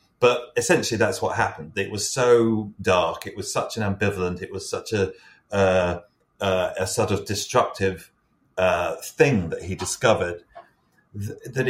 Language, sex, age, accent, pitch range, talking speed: English, male, 30-49, British, 95-125 Hz, 145 wpm